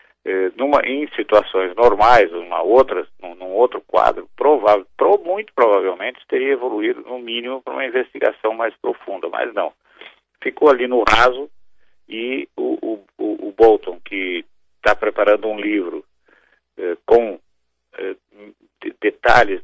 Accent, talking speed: Brazilian, 140 wpm